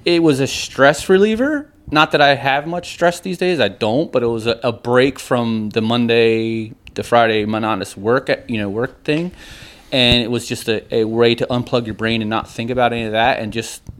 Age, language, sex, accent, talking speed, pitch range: 30-49, English, male, American, 225 wpm, 110-140 Hz